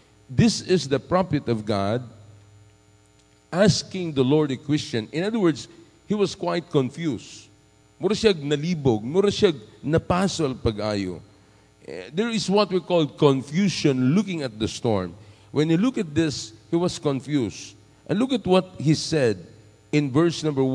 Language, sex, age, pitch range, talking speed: English, male, 50-69, 105-150 Hz, 130 wpm